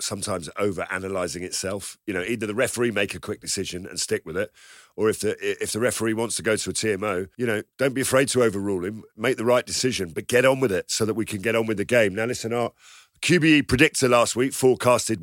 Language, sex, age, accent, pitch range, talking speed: English, male, 50-69, British, 105-125 Hz, 245 wpm